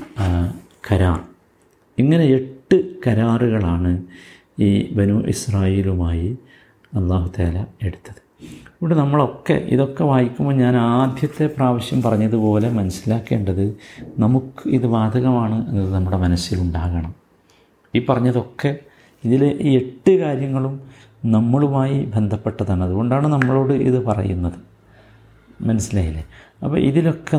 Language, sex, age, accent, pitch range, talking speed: Malayalam, male, 50-69, native, 95-125 Hz, 85 wpm